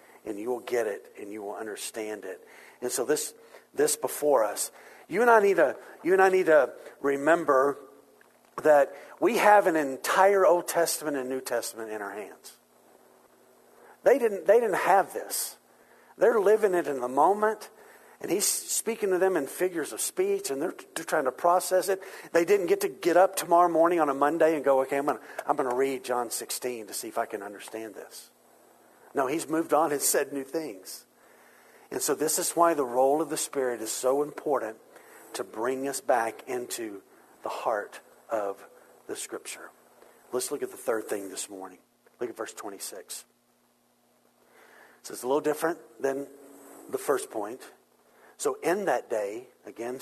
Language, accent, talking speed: English, American, 180 wpm